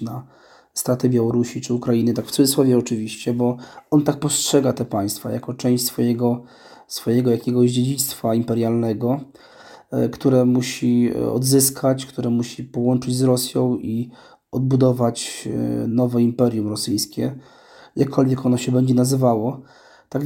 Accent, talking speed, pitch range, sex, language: native, 120 wpm, 120-145 Hz, male, Polish